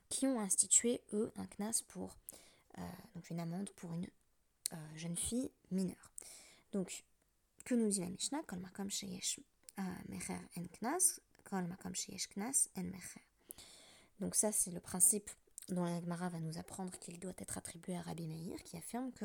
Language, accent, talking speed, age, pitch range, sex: French, French, 150 wpm, 20-39, 175-225 Hz, female